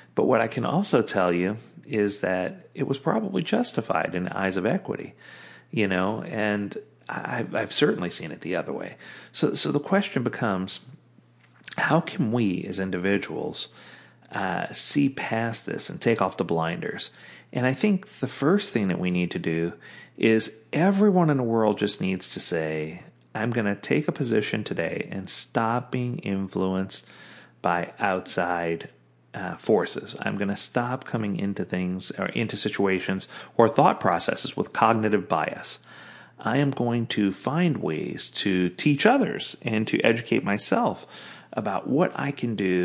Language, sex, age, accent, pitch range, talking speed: English, male, 40-59, American, 95-125 Hz, 160 wpm